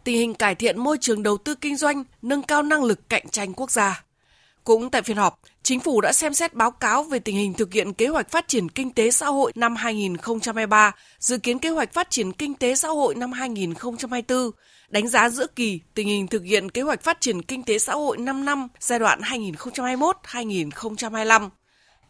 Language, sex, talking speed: Vietnamese, female, 210 wpm